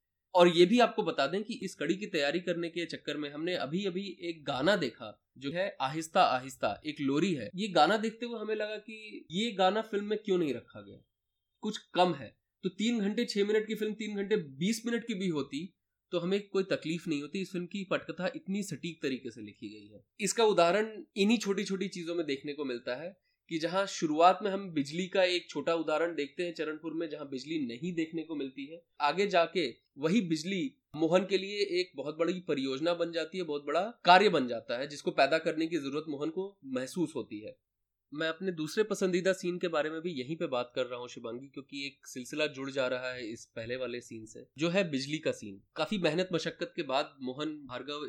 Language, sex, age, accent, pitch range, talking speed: Hindi, male, 20-39, native, 140-190 Hz, 215 wpm